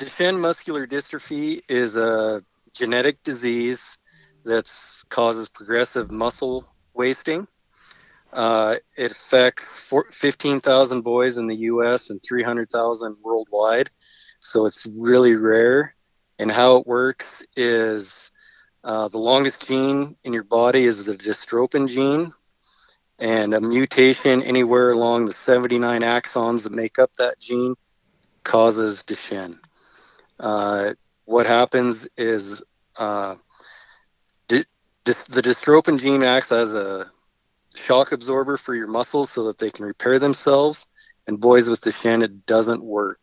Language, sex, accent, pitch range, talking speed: English, male, American, 110-125 Hz, 120 wpm